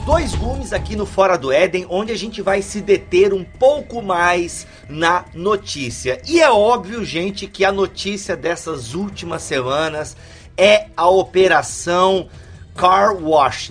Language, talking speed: Portuguese, 145 wpm